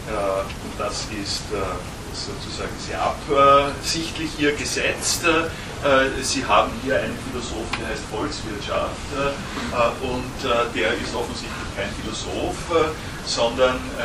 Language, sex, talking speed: German, male, 100 wpm